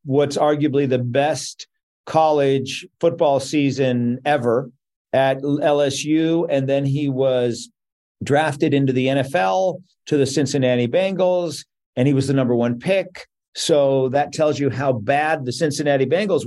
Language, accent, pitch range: English, American, 125-150 Hz